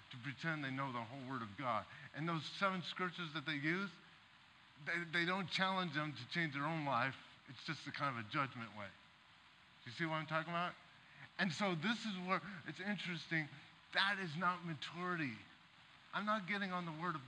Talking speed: 205 wpm